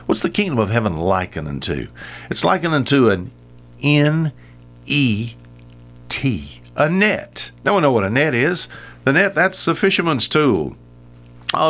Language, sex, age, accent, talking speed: English, male, 60-79, American, 140 wpm